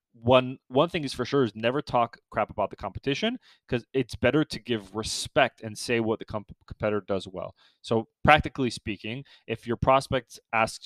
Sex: male